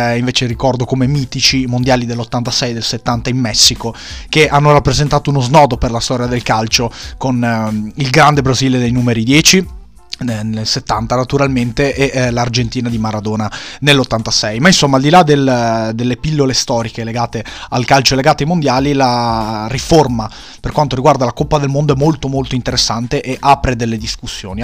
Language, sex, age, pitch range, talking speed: Italian, male, 30-49, 115-145 Hz, 170 wpm